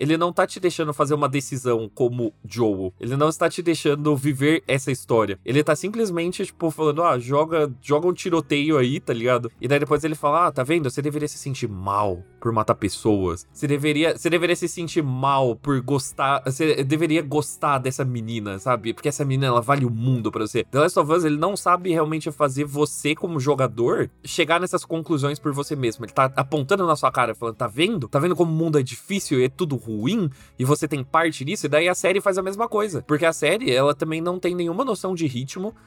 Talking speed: 220 wpm